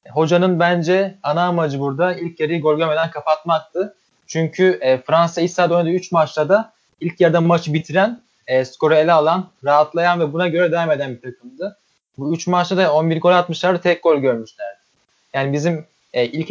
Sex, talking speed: male, 165 wpm